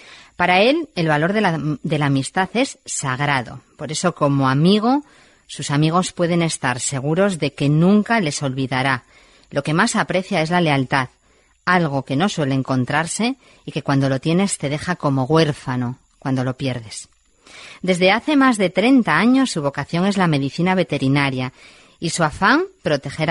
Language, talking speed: Spanish, 165 wpm